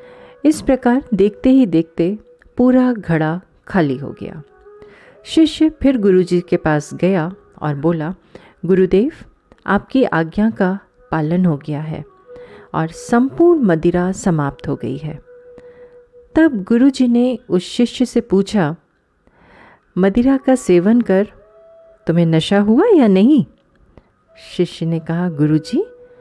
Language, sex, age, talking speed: Hindi, female, 40-59, 120 wpm